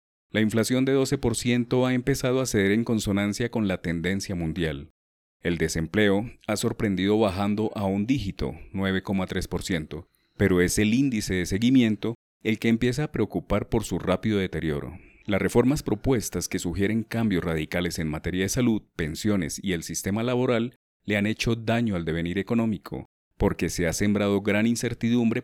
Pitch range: 90-115 Hz